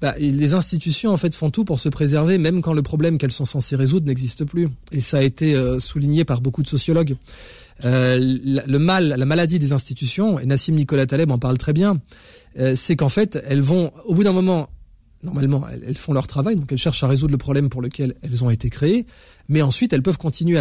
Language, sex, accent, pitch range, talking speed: French, male, French, 135-165 Hz, 230 wpm